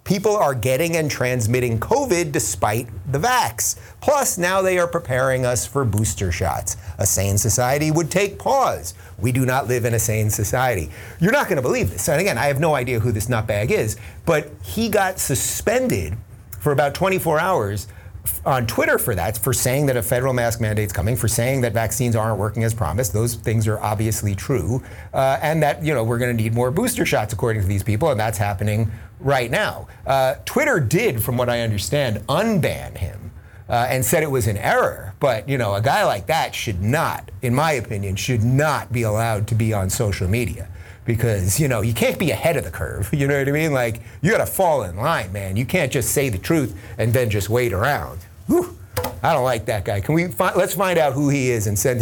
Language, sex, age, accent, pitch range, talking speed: English, male, 30-49, American, 105-135 Hz, 220 wpm